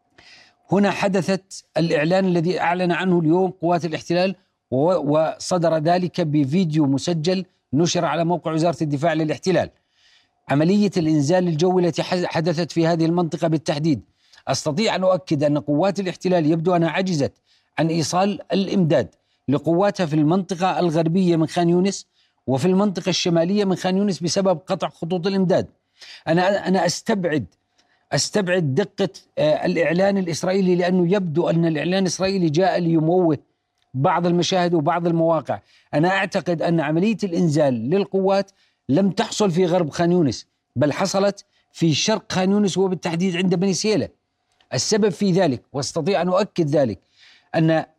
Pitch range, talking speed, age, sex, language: 165-190 Hz, 130 wpm, 40-59, male, Arabic